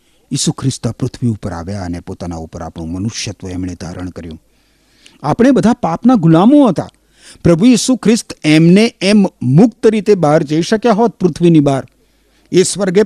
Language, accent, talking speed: Gujarati, native, 150 wpm